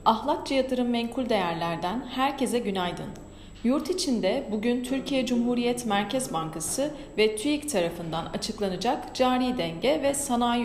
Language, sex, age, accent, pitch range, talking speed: Turkish, female, 40-59, native, 190-265 Hz, 120 wpm